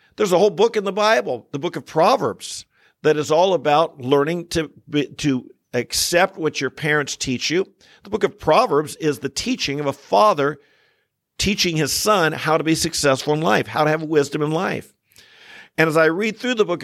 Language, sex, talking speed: English, male, 205 wpm